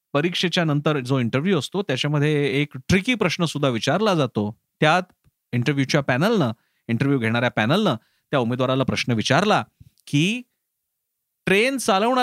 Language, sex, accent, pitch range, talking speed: Marathi, male, native, 135-190 Hz, 125 wpm